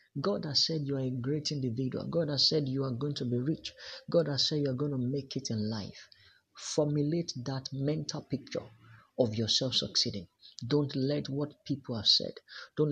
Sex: male